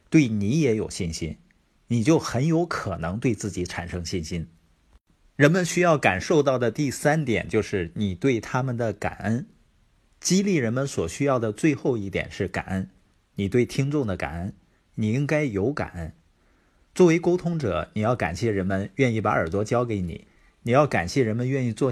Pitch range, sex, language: 95-135 Hz, male, Chinese